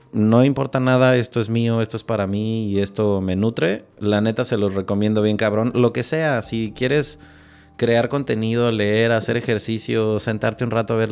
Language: Spanish